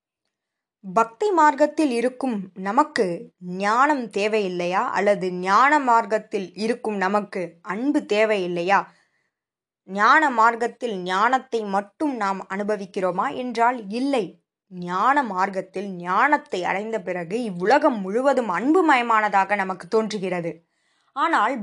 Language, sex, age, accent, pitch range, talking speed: Tamil, female, 20-39, native, 190-270 Hz, 90 wpm